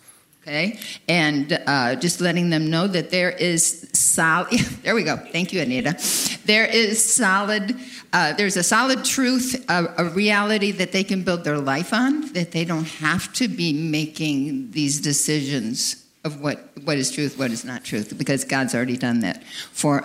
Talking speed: 175 wpm